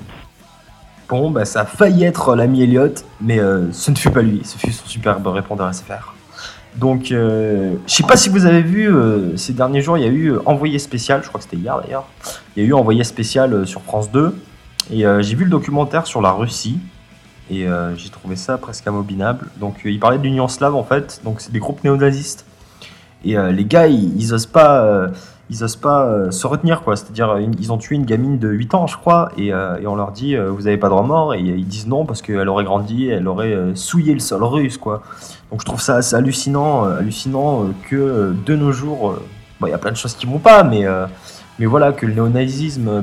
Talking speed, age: 230 wpm, 20-39